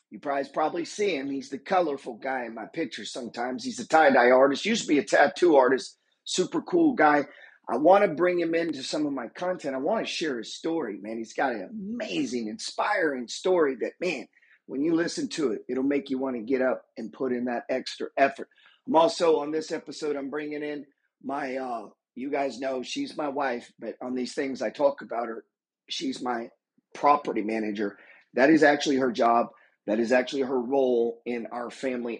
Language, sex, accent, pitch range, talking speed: English, male, American, 120-160 Hz, 205 wpm